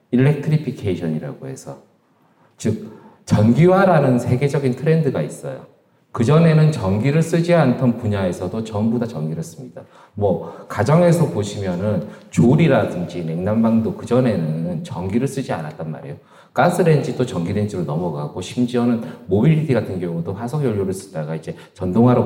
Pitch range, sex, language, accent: 105-140 Hz, male, Korean, native